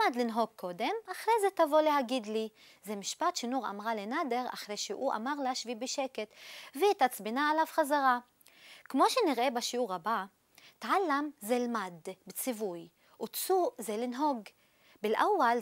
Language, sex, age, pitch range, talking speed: Hebrew, female, 20-39, 230-325 Hz, 135 wpm